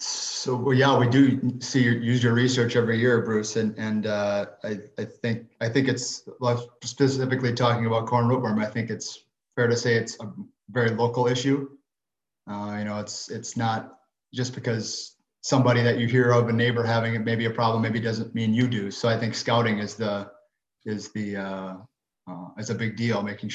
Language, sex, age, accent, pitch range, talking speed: English, male, 30-49, American, 105-120 Hz, 200 wpm